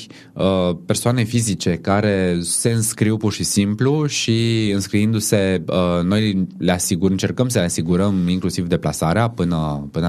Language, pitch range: Romanian, 90-120 Hz